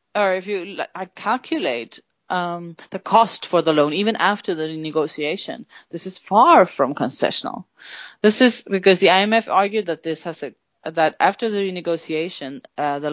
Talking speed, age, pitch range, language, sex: 170 wpm, 30-49, 150-195 Hz, English, female